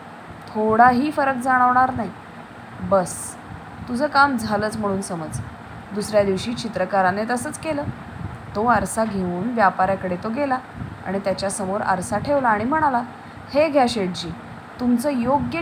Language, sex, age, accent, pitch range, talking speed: English, female, 20-39, Indian, 195-255 Hz, 130 wpm